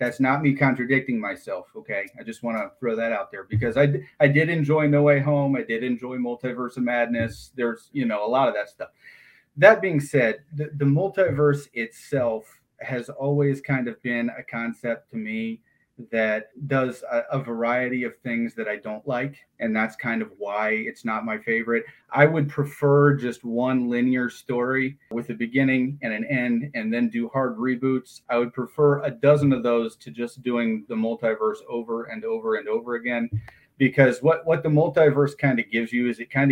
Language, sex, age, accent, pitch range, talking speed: English, male, 30-49, American, 115-145 Hz, 195 wpm